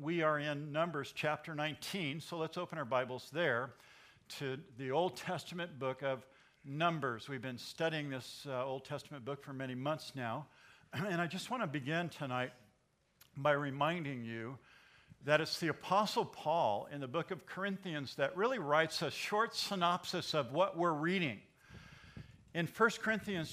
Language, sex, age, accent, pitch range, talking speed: English, male, 50-69, American, 135-180 Hz, 165 wpm